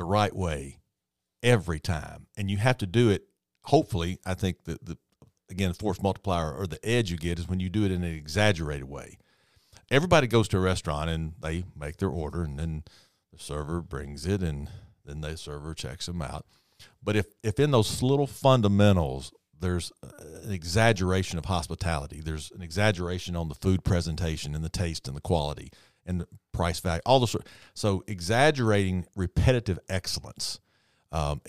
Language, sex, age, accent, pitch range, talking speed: English, male, 50-69, American, 80-100 Hz, 175 wpm